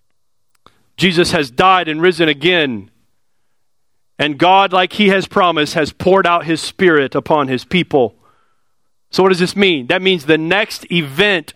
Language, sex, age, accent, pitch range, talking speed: English, male, 40-59, American, 135-180 Hz, 155 wpm